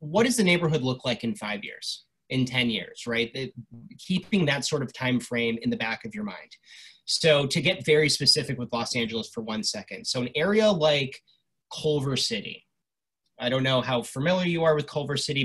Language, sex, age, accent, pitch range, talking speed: English, male, 30-49, American, 120-155 Hz, 200 wpm